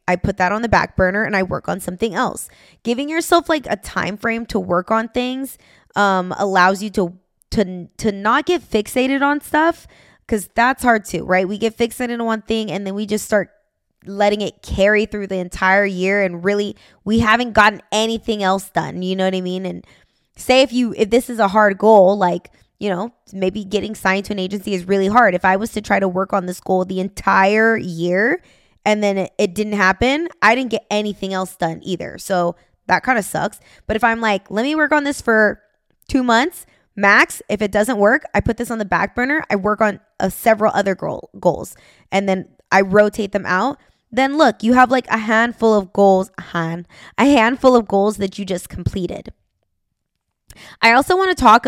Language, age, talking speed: English, 20-39, 210 wpm